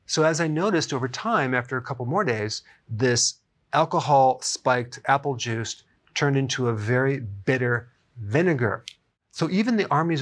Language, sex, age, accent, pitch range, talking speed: English, male, 40-59, American, 115-150 Hz, 145 wpm